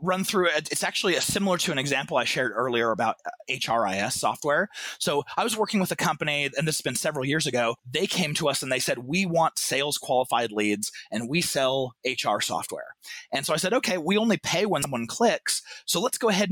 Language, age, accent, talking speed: English, 30-49, American, 225 wpm